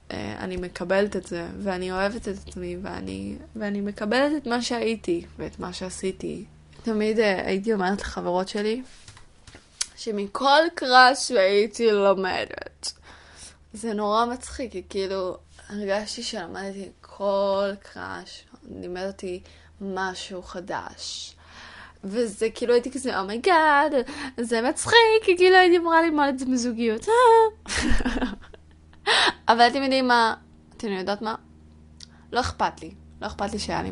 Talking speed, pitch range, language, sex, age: 125 wpm, 170-225 Hz, Hebrew, female, 20-39